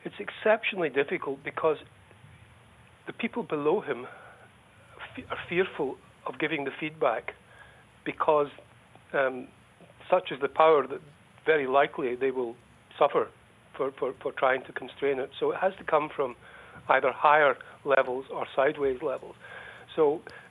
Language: English